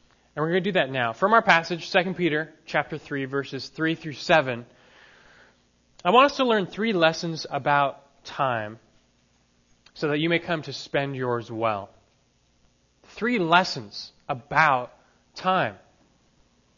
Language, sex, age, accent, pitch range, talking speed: English, male, 20-39, American, 110-165 Hz, 145 wpm